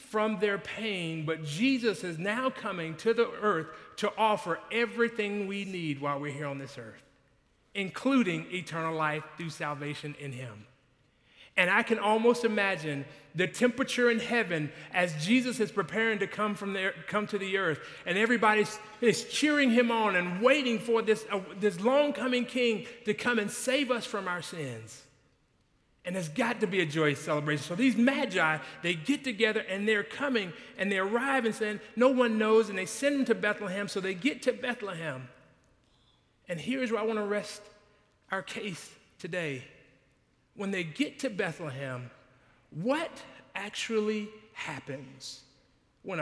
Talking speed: 165 wpm